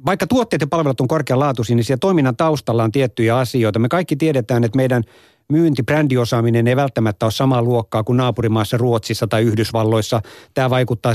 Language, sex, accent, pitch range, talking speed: Finnish, male, native, 120-150 Hz, 160 wpm